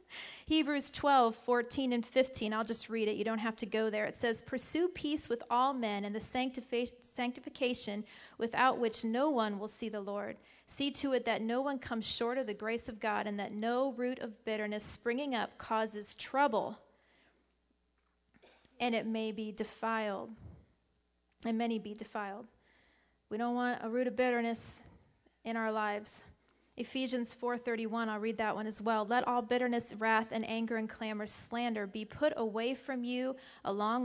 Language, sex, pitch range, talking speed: English, female, 215-255 Hz, 175 wpm